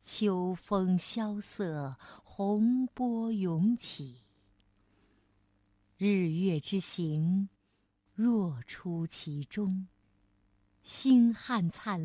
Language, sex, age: Chinese, female, 50-69